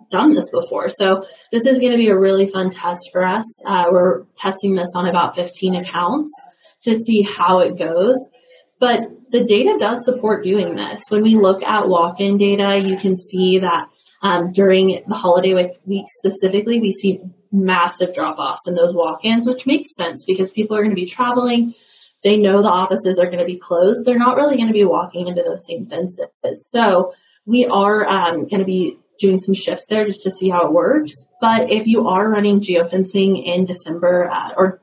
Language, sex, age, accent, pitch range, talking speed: English, female, 20-39, American, 180-225 Hz, 200 wpm